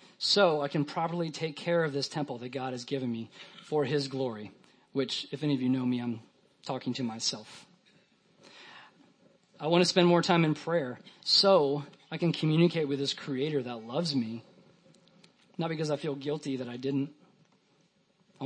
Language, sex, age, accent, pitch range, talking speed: English, male, 40-59, American, 130-170 Hz, 180 wpm